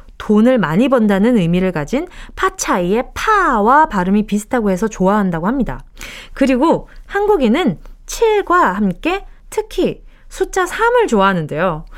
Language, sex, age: Korean, female, 20-39